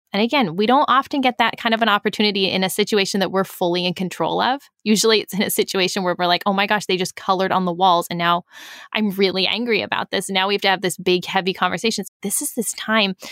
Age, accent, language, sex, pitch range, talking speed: 10-29, American, English, female, 180-220 Hz, 255 wpm